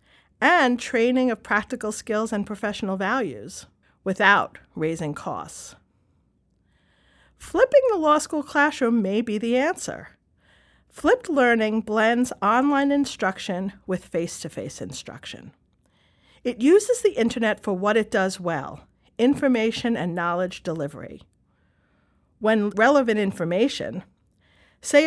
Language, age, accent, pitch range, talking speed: German, 50-69, American, 185-245 Hz, 110 wpm